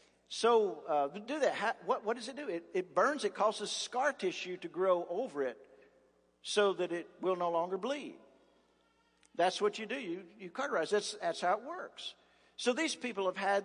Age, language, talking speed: 50-69, English, 195 wpm